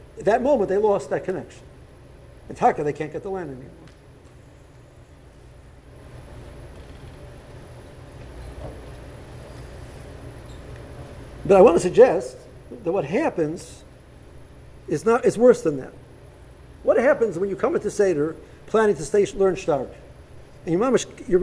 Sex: male